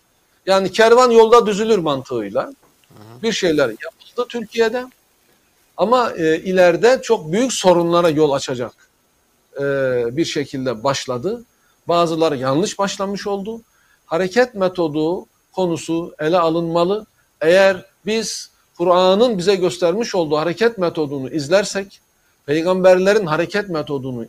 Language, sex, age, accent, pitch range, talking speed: Turkish, male, 60-79, native, 165-225 Hz, 105 wpm